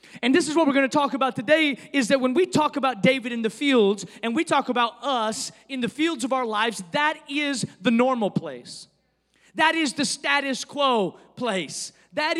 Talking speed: 210 wpm